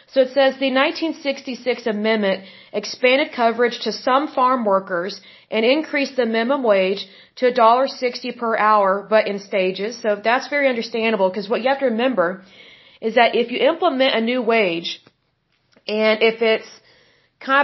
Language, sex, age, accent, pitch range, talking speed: Hindi, female, 40-59, American, 215-260 Hz, 155 wpm